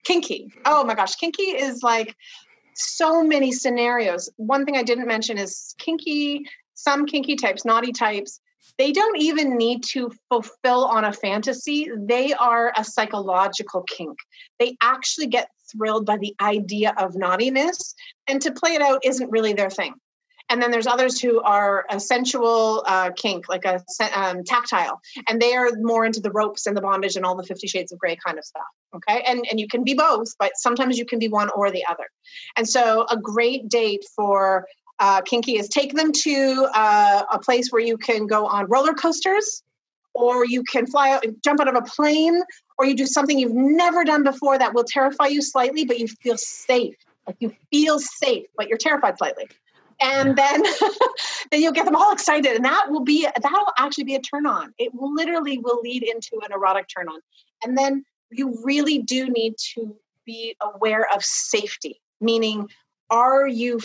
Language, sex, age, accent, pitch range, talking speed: English, female, 30-49, American, 215-285 Hz, 190 wpm